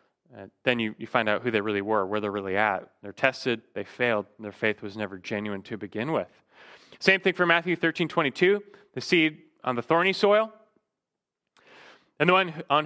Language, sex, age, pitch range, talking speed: English, male, 30-49, 115-160 Hz, 205 wpm